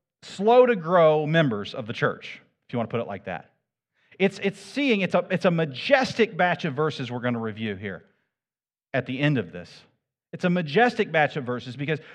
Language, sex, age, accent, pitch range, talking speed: English, male, 40-59, American, 130-185 Hz, 200 wpm